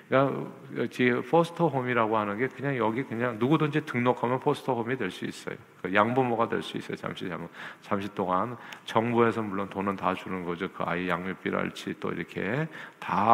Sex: male